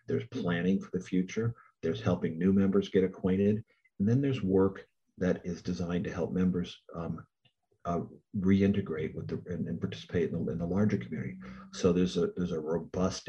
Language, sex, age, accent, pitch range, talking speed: English, male, 50-69, American, 85-95 Hz, 185 wpm